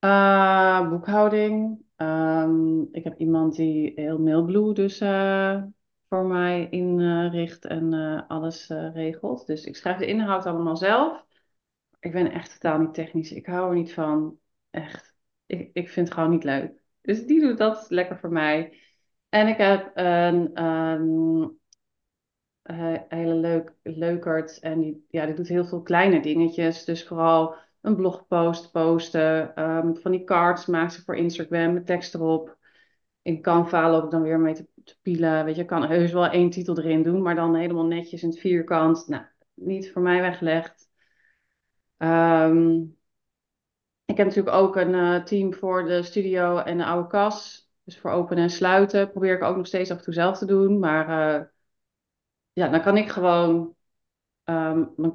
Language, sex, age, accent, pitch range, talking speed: Dutch, female, 30-49, Dutch, 160-185 Hz, 175 wpm